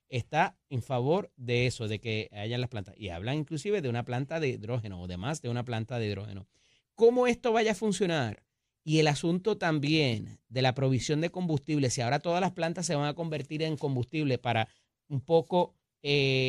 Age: 30-49